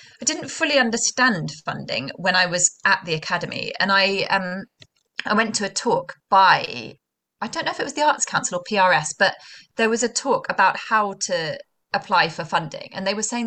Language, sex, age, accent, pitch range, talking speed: English, female, 20-39, British, 180-230 Hz, 205 wpm